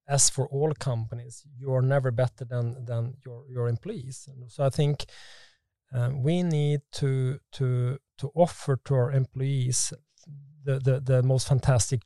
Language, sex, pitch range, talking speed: English, male, 125-145 Hz, 155 wpm